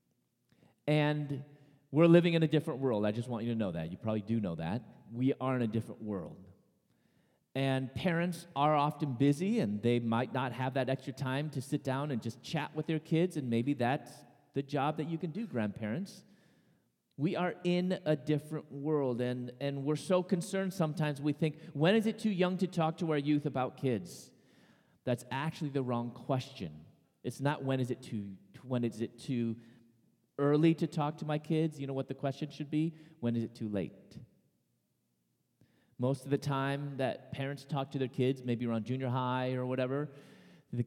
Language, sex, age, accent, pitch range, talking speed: English, male, 30-49, American, 120-155 Hz, 195 wpm